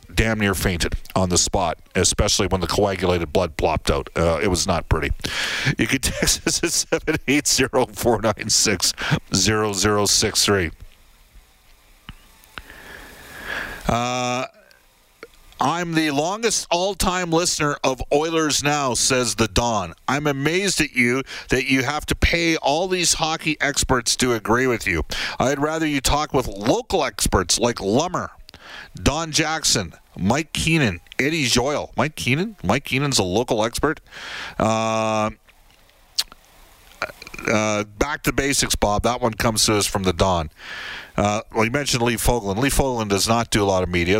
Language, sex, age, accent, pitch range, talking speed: English, male, 50-69, American, 95-140 Hz, 150 wpm